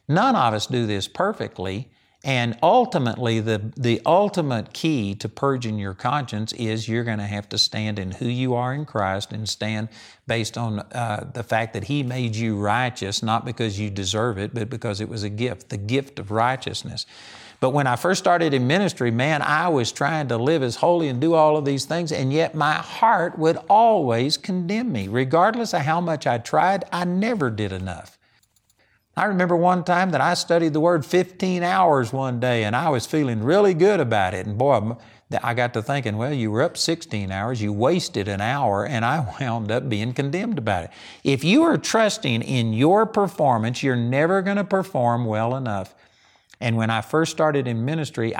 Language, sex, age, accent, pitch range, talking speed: English, male, 50-69, American, 110-160 Hz, 200 wpm